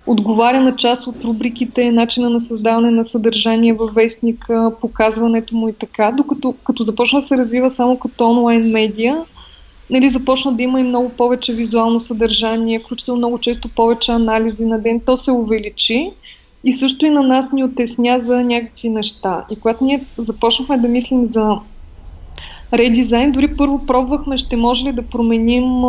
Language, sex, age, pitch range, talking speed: Bulgarian, female, 20-39, 225-255 Hz, 160 wpm